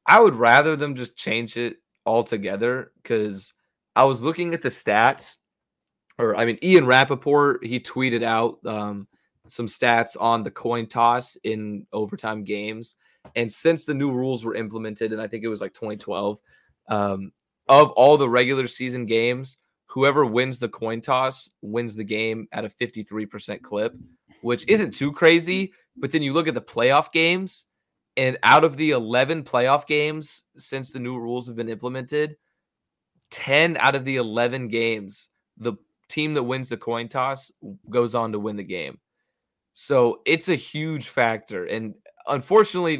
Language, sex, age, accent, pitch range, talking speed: English, male, 20-39, American, 110-140 Hz, 165 wpm